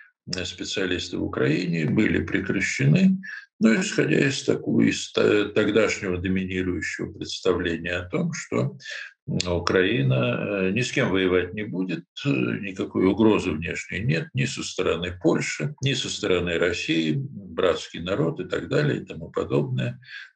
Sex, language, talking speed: male, Russian, 125 wpm